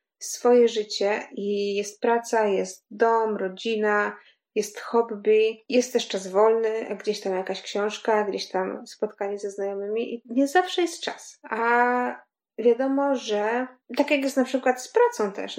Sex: female